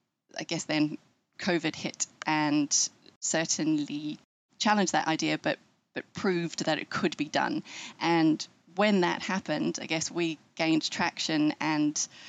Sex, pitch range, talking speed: female, 155-190 Hz, 135 wpm